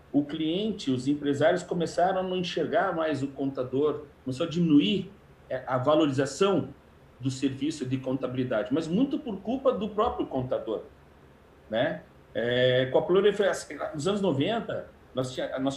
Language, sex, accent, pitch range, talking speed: Portuguese, male, Brazilian, 130-200 Hz, 135 wpm